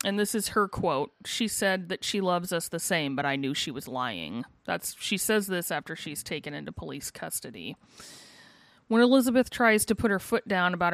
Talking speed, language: 210 wpm, English